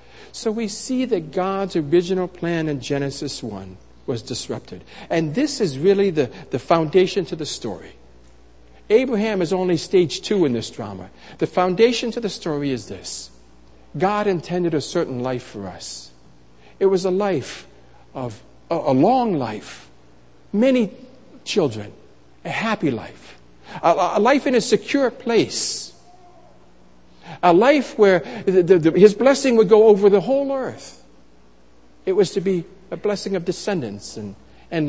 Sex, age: male, 60-79